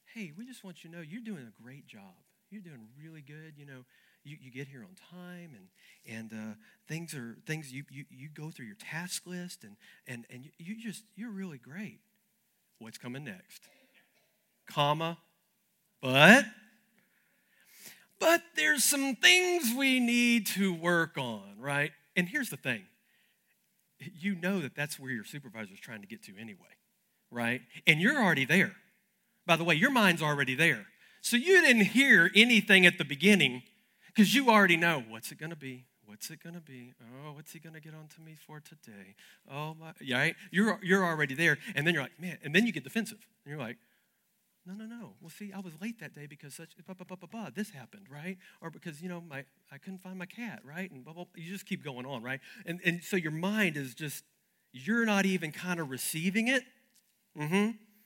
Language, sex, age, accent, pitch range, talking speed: English, male, 40-59, American, 150-210 Hz, 205 wpm